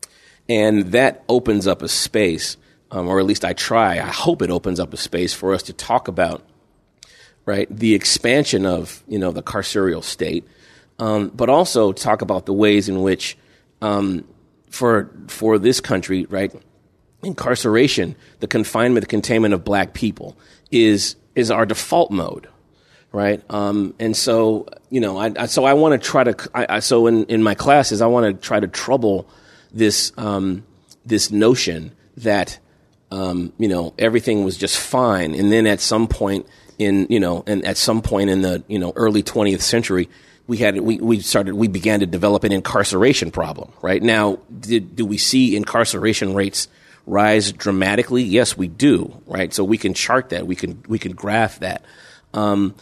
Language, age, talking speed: English, 30-49, 180 wpm